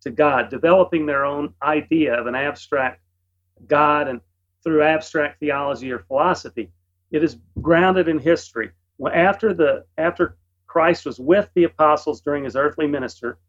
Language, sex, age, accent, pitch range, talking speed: English, male, 40-59, American, 125-175 Hz, 145 wpm